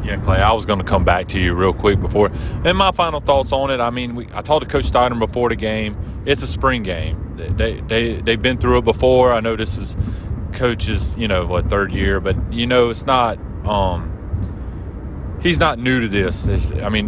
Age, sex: 30-49, male